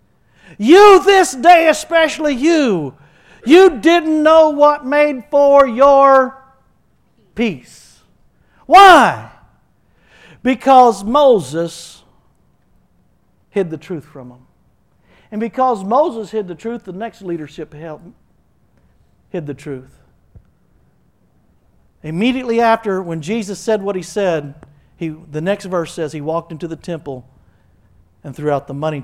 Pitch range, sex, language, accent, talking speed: 145-205 Hz, male, English, American, 115 wpm